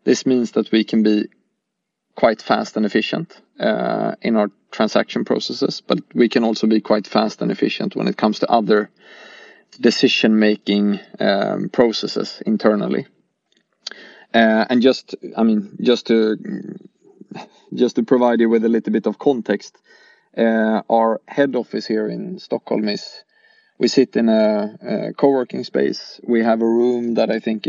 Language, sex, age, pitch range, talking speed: English, male, 20-39, 110-125 Hz, 155 wpm